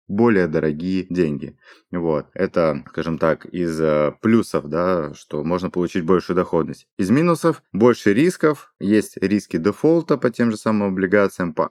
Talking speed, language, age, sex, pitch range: 150 wpm, Russian, 20-39, male, 80-100 Hz